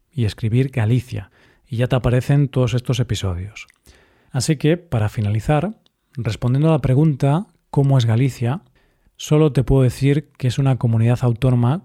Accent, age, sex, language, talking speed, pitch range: Spanish, 40-59, male, Spanish, 150 wpm, 120-150 Hz